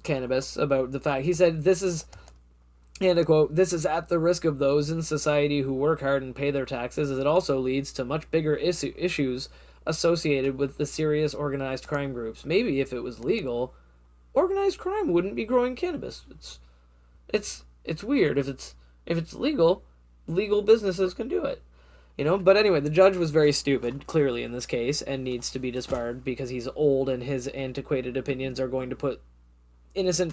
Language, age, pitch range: English, 10-29, 125-170 Hz